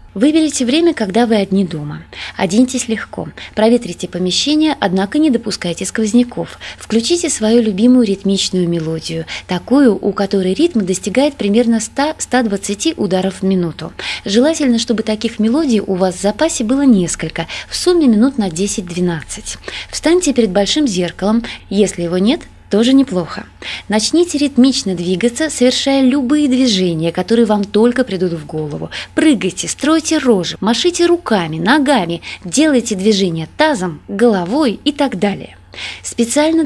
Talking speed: 130 wpm